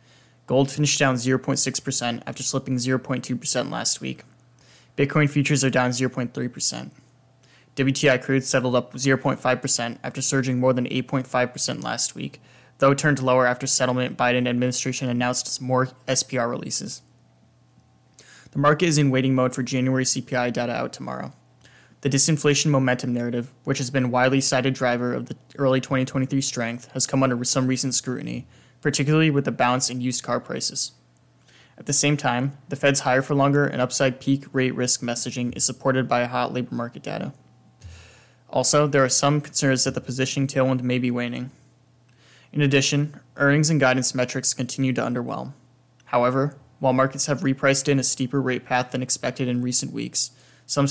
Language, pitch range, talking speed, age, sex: English, 125-135 Hz, 165 wpm, 10-29, male